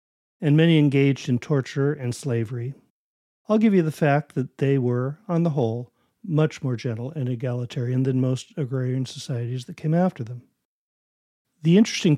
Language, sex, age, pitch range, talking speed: English, male, 50-69, 125-155 Hz, 165 wpm